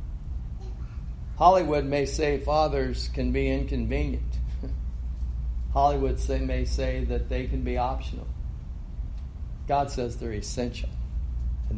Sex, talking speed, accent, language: male, 100 wpm, American, English